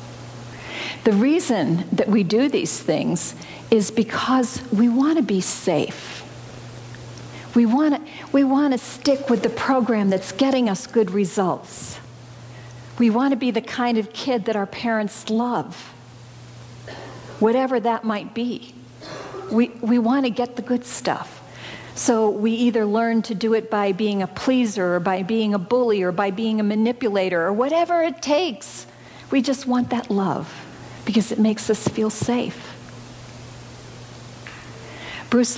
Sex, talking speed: female, 150 wpm